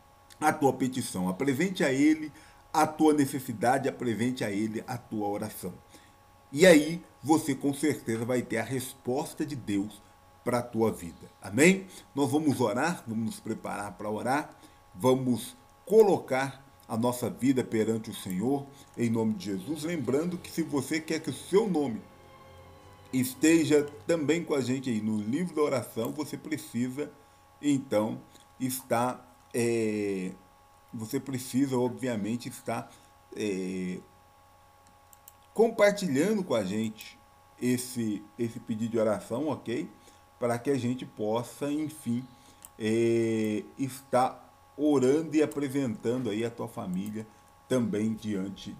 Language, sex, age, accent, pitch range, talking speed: Portuguese, male, 50-69, Brazilian, 100-140 Hz, 130 wpm